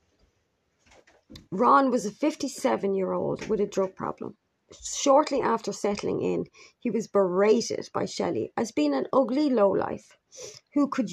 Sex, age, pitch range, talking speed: female, 30-49, 200-250 Hz, 140 wpm